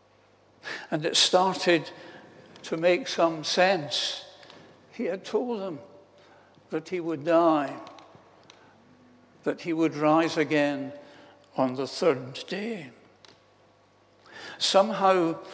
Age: 60-79